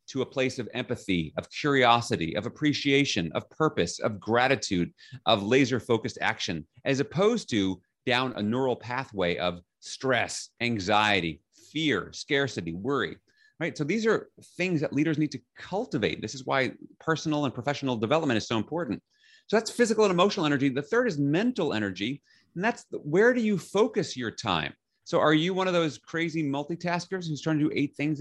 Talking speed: 175 wpm